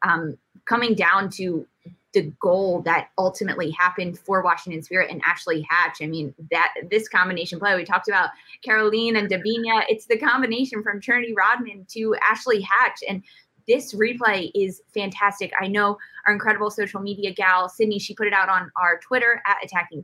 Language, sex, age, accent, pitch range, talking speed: English, female, 20-39, American, 180-215 Hz, 175 wpm